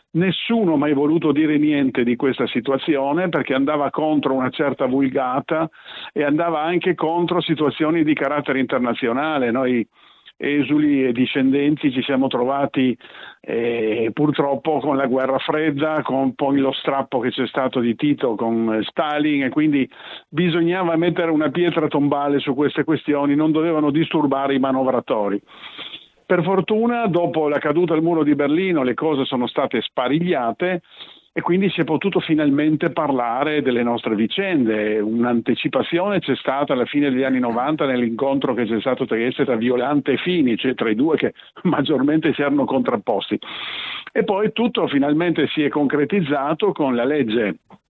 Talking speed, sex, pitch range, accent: 150 wpm, male, 135-160 Hz, native